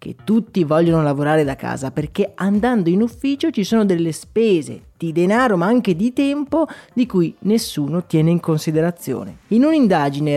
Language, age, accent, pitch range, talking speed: Italian, 20-39, native, 150-215 Hz, 160 wpm